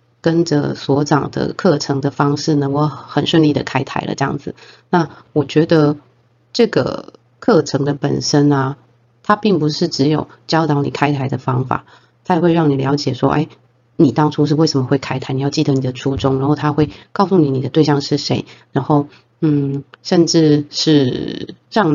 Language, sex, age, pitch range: Chinese, female, 30-49, 135-155 Hz